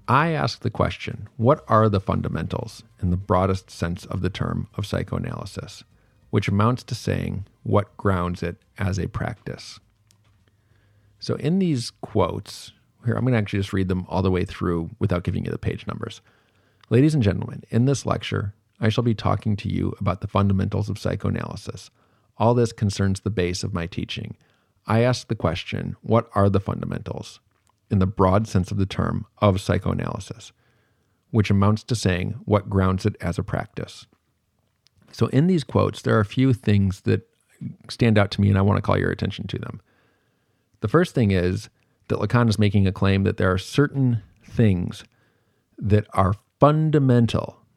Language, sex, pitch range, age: English, male, 100-120 Hz, 40-59